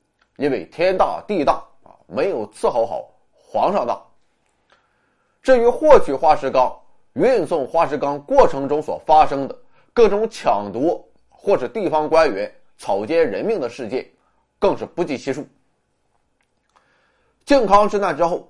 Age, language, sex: 20-39, Chinese, male